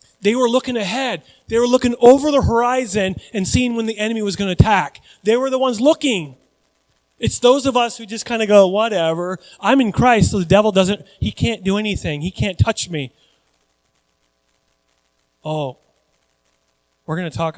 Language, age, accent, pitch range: English, 30-49, American, 140-215 Hz